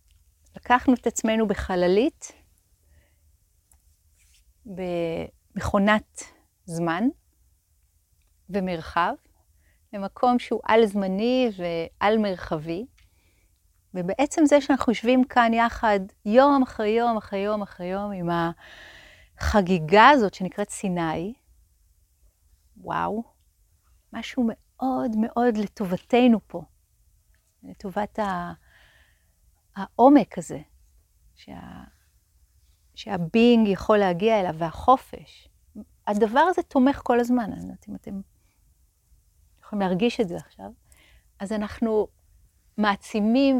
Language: Hebrew